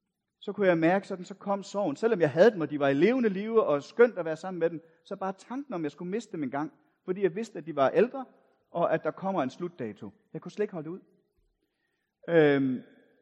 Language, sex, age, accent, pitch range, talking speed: Danish, male, 40-59, native, 160-220 Hz, 250 wpm